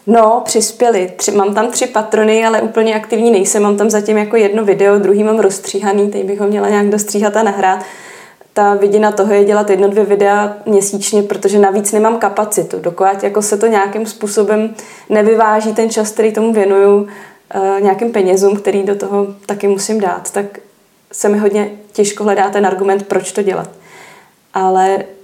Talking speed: 175 wpm